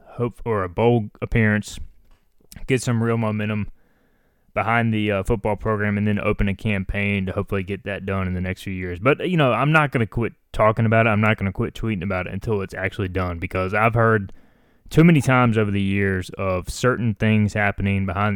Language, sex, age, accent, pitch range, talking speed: English, male, 20-39, American, 95-115 Hz, 215 wpm